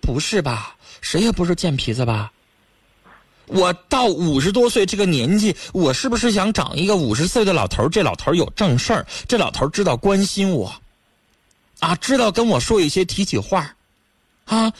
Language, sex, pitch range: Chinese, male, 145-220 Hz